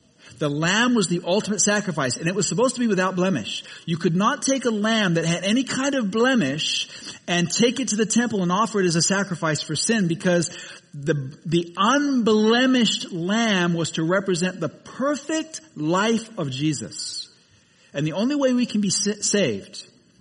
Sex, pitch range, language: male, 160-225 Hz, English